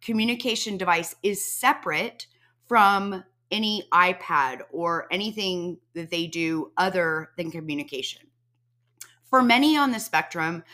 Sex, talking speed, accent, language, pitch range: female, 110 wpm, American, English, 165-215 Hz